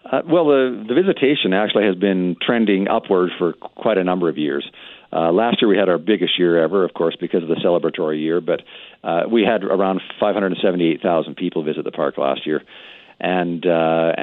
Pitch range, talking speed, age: 80-100 Hz, 195 wpm, 50-69